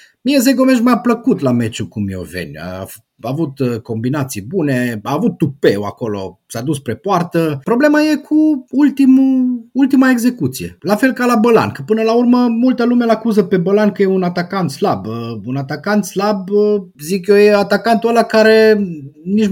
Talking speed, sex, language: 170 wpm, male, Romanian